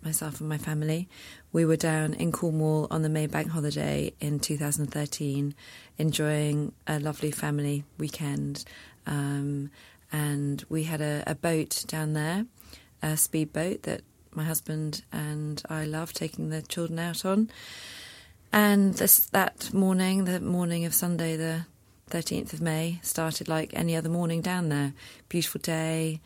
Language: English